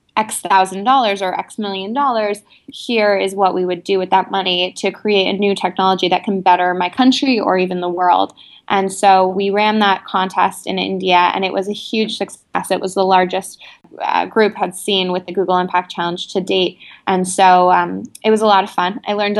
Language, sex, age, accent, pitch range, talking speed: English, female, 20-39, American, 180-200 Hz, 215 wpm